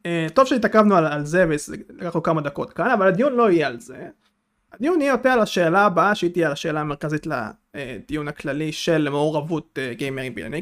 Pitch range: 160-205 Hz